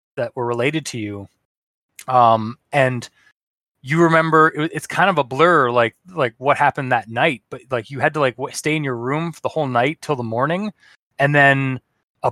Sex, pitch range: male, 120-150 Hz